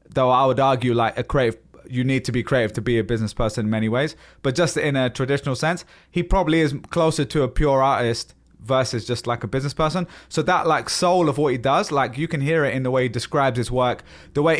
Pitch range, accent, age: 120-150 Hz, British, 20-39